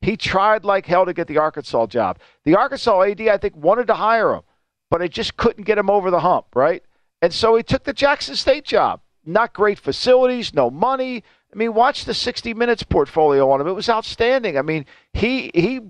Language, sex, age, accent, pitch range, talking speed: English, male, 50-69, American, 180-235 Hz, 215 wpm